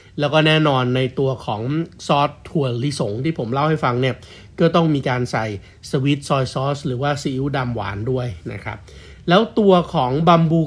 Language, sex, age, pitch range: Thai, male, 60-79, 135-175 Hz